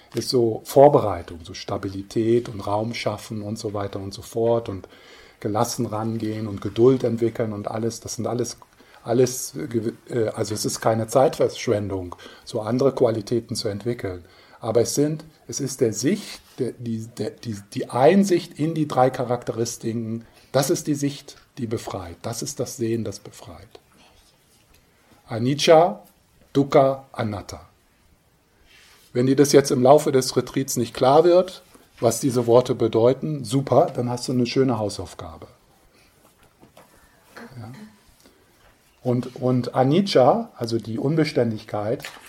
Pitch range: 110-130 Hz